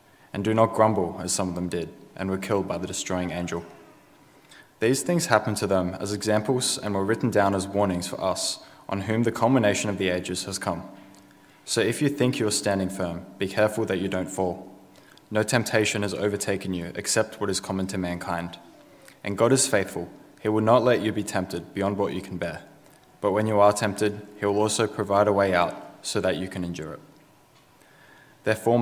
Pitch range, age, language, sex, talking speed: 95-110 Hz, 20-39, English, male, 205 wpm